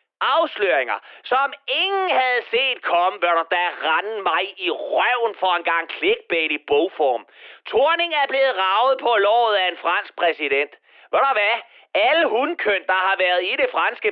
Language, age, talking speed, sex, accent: Danish, 30-49, 155 wpm, male, native